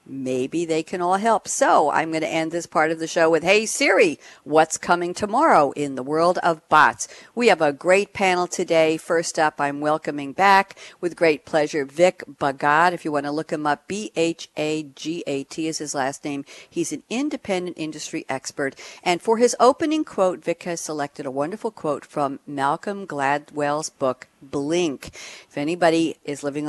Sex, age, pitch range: female, 50-69, 145-190 Hz